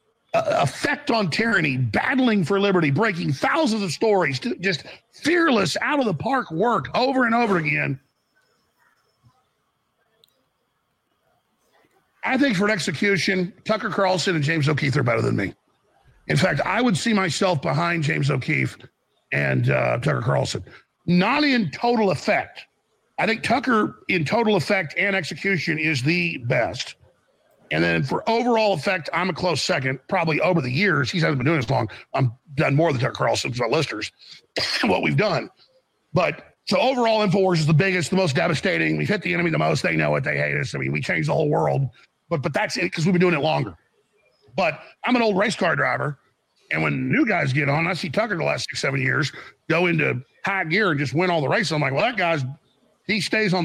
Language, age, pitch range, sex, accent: Chinese, 50-69, 150-205 Hz, male, American